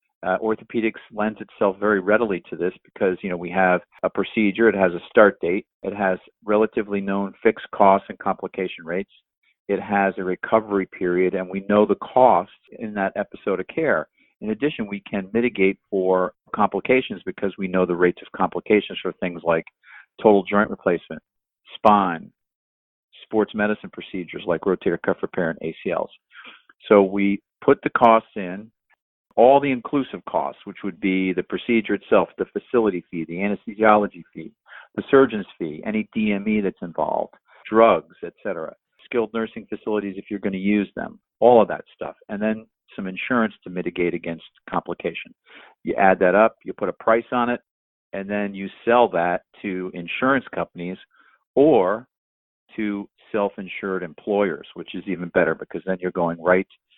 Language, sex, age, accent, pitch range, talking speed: English, male, 50-69, American, 95-110 Hz, 165 wpm